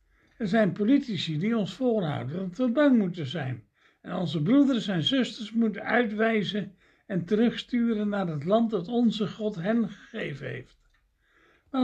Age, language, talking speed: 60-79, Dutch, 150 wpm